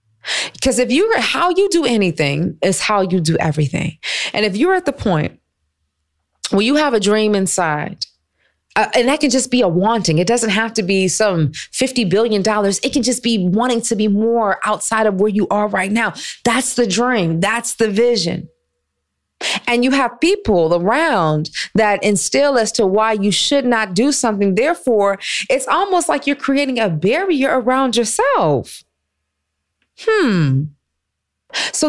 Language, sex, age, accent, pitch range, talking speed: English, female, 30-49, American, 175-240 Hz, 165 wpm